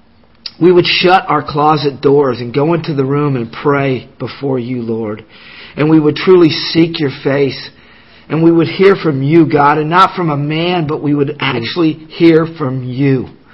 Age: 50-69